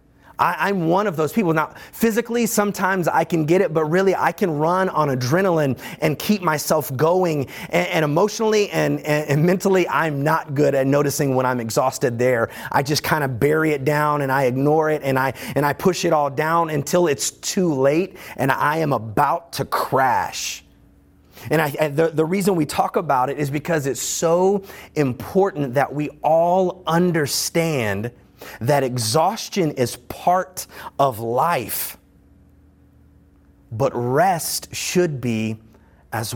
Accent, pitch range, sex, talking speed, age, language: American, 130-175 Hz, male, 165 wpm, 30-49, English